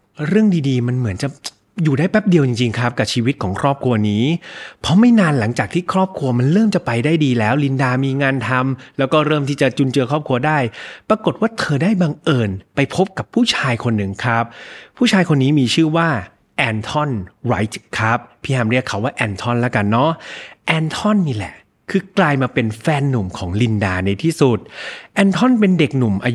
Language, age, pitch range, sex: Thai, 30-49, 115-165 Hz, male